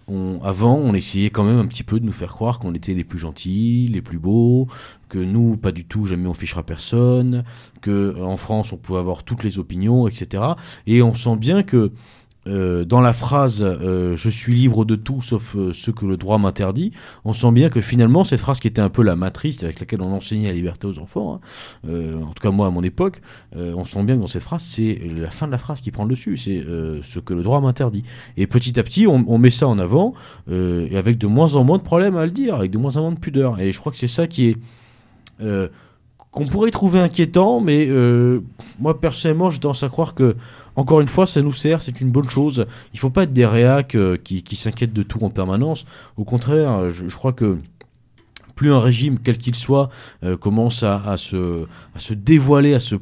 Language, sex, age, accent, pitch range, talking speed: French, male, 40-59, French, 95-130 Hz, 245 wpm